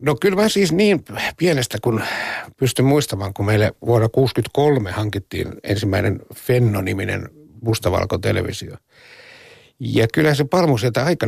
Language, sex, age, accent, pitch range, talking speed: Finnish, male, 60-79, native, 100-125 Hz, 120 wpm